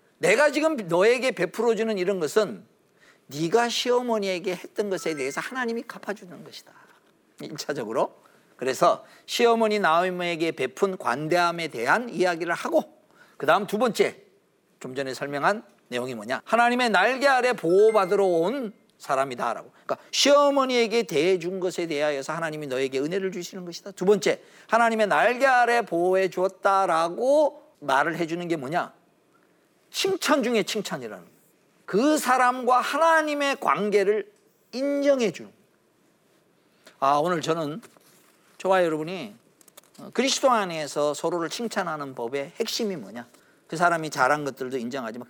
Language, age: Korean, 50-69